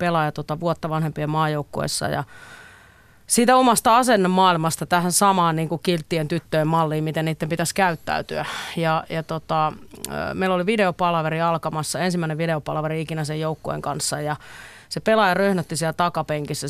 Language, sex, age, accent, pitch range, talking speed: Finnish, female, 30-49, native, 155-180 Hz, 140 wpm